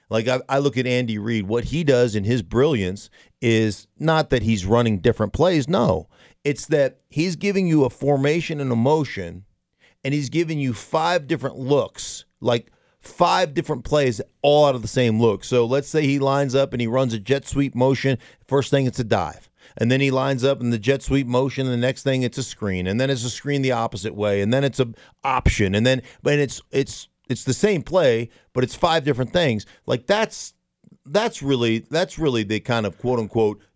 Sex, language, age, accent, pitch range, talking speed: male, English, 40-59, American, 115-150 Hz, 215 wpm